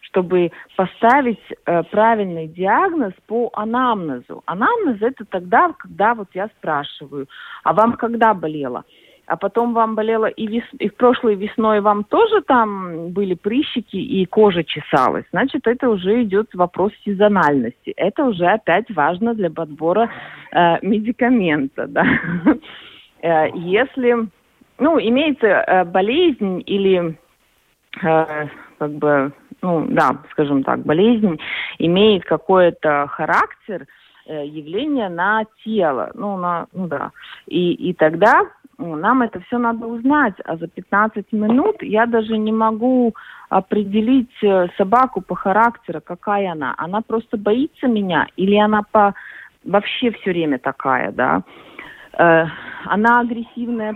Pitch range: 180-235 Hz